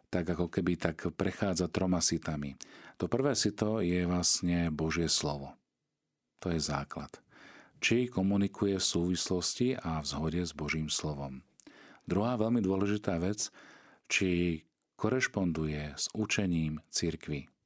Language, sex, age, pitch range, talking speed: Slovak, male, 40-59, 75-95 Hz, 120 wpm